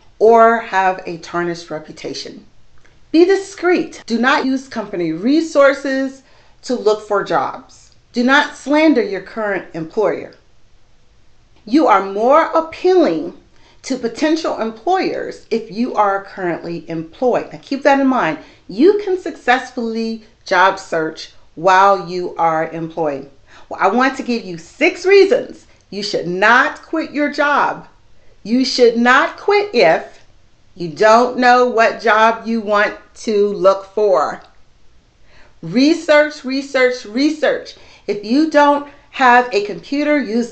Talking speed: 130 wpm